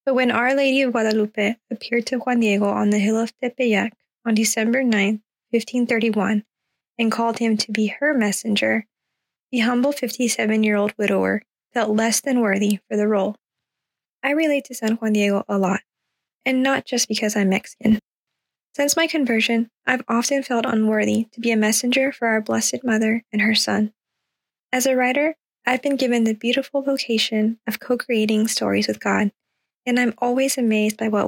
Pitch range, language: 215-255 Hz, English